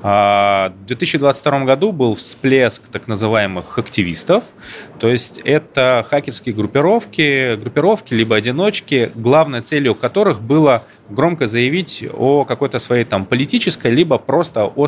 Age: 20-39